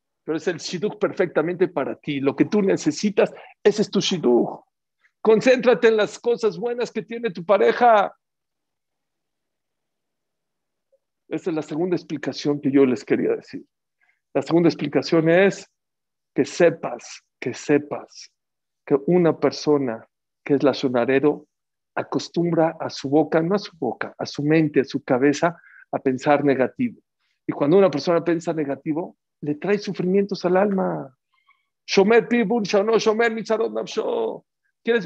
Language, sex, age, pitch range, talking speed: English, male, 50-69, 150-210 Hz, 135 wpm